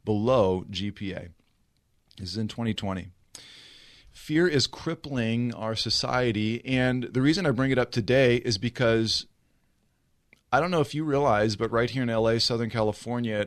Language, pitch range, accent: English, 110-130 Hz, American